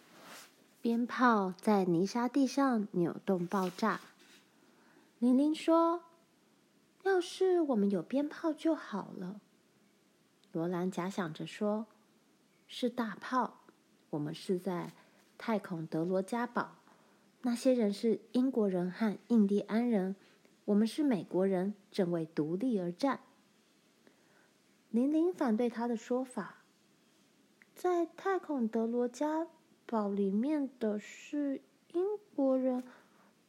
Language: Chinese